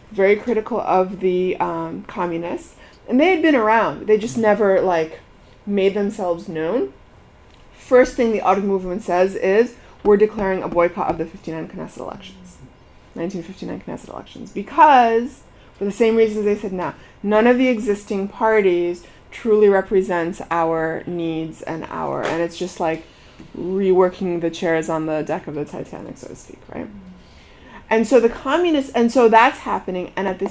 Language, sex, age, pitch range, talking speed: English, female, 30-49, 180-225 Hz, 165 wpm